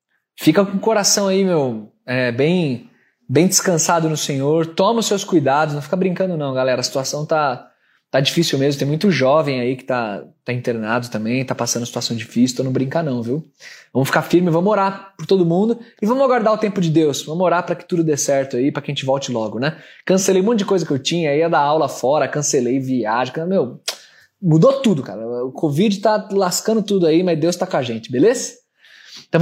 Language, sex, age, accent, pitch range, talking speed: Portuguese, male, 20-39, Brazilian, 135-195 Hz, 220 wpm